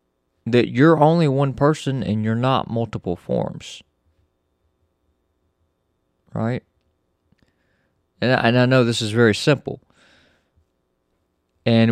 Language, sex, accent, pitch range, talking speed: English, male, American, 90-125 Hz, 105 wpm